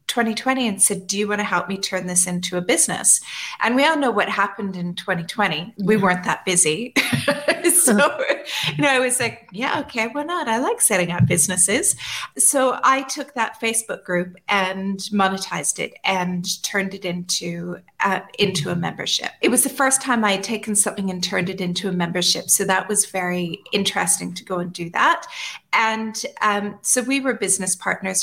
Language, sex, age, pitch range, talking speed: English, female, 30-49, 180-225 Hz, 190 wpm